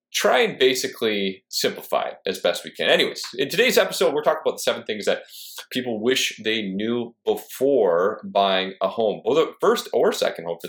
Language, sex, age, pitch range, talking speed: English, male, 30-49, 95-140 Hz, 195 wpm